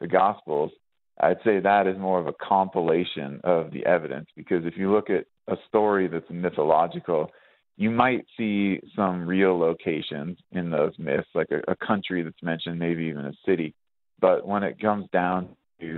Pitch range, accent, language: 85-100 Hz, American, English